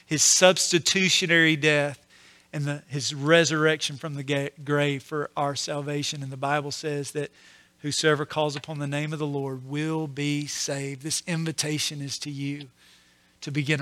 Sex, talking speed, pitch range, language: male, 150 wpm, 145-175 Hz, English